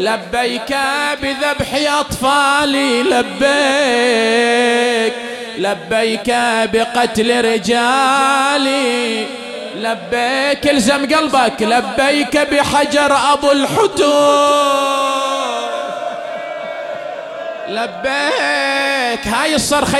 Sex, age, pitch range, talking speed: male, 30-49, 260-290 Hz, 50 wpm